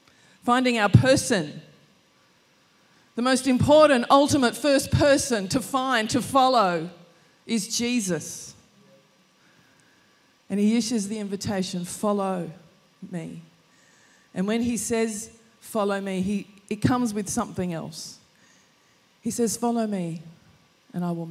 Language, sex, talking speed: English, female, 115 wpm